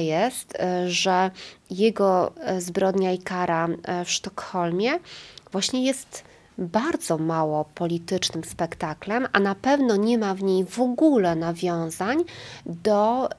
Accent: native